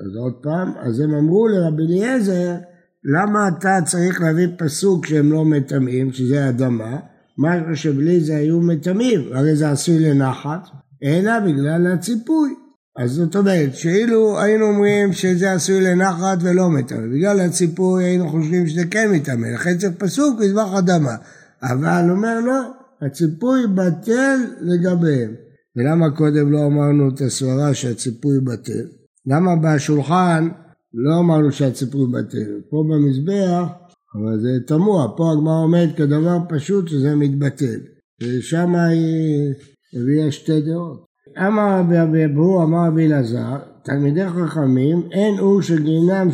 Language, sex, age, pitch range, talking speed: Hebrew, male, 60-79, 140-180 Hz, 125 wpm